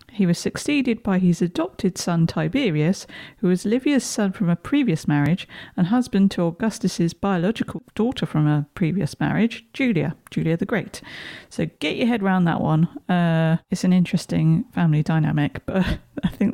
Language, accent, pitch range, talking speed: English, British, 160-215 Hz, 165 wpm